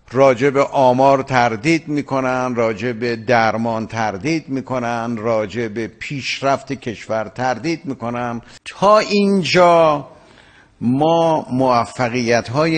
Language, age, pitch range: Persian, 50-69, 125-175 Hz